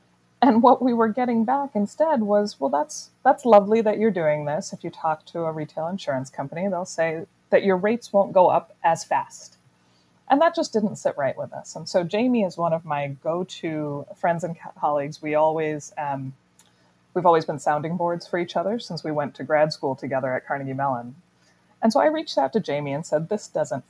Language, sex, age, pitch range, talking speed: English, female, 30-49, 140-195 Hz, 215 wpm